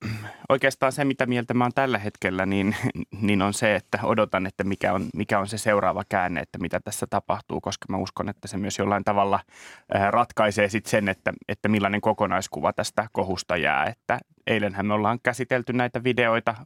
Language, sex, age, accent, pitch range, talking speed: Finnish, male, 20-39, native, 100-115 Hz, 180 wpm